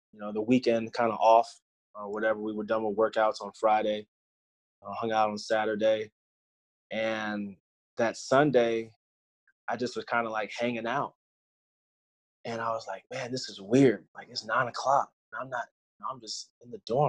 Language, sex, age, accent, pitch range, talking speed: English, male, 20-39, American, 105-125 Hz, 185 wpm